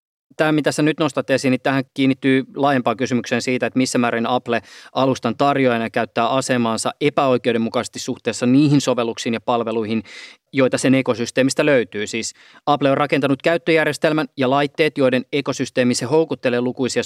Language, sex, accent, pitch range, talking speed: Finnish, male, native, 120-145 Hz, 150 wpm